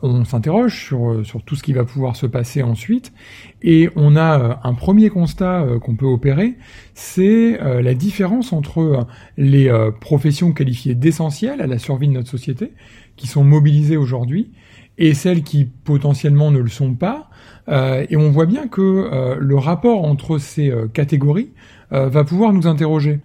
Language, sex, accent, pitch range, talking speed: French, male, French, 130-170 Hz, 155 wpm